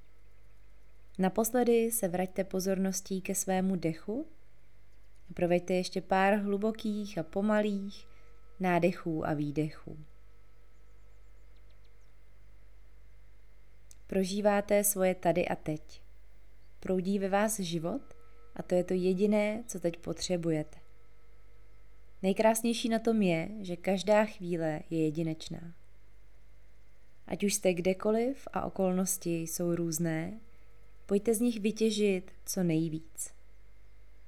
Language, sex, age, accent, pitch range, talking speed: Czech, female, 20-39, native, 115-195 Hz, 100 wpm